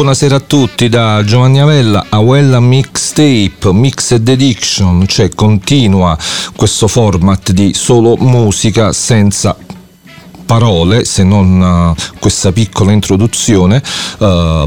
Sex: male